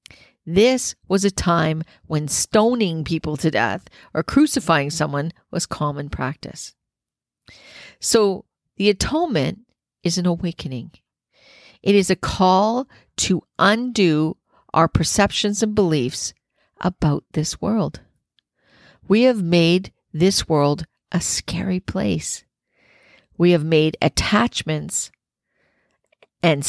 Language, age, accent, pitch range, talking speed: English, 50-69, American, 155-195 Hz, 105 wpm